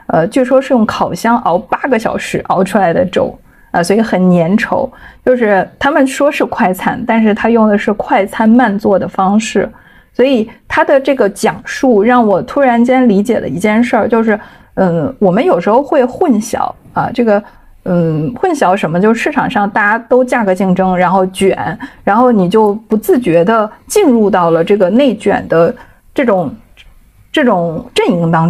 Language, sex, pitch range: Chinese, female, 185-245 Hz